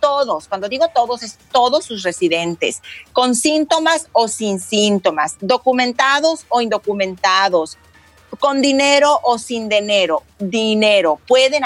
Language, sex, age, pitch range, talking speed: Spanish, female, 40-59, 205-255 Hz, 120 wpm